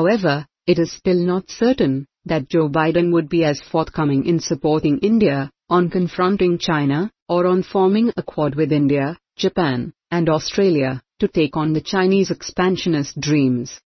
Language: English